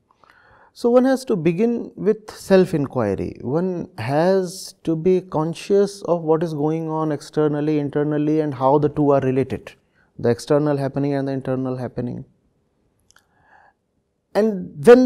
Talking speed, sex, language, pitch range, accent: 135 wpm, male, English, 155-210 Hz, Indian